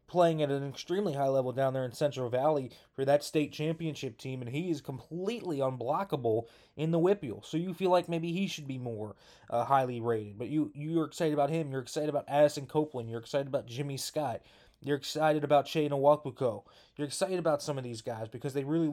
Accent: American